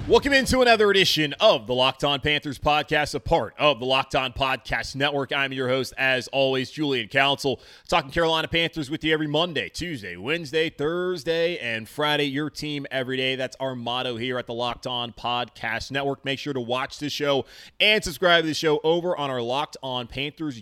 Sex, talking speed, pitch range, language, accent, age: male, 200 wpm, 130-165 Hz, English, American, 20-39